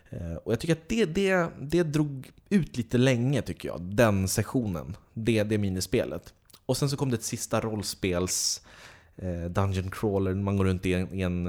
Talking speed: 185 wpm